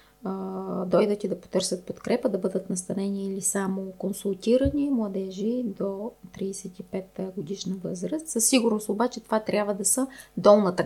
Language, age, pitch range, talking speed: Bulgarian, 20-39, 190-250 Hz, 135 wpm